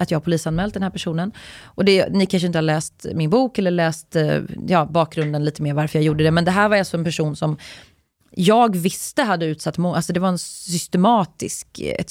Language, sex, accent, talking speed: Swedish, female, native, 230 wpm